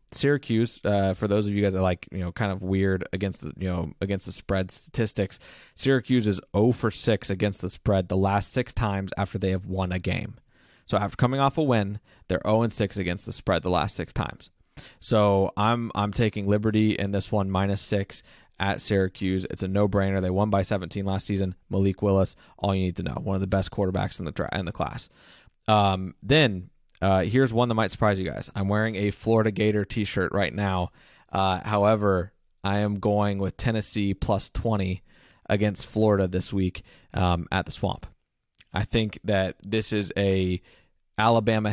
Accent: American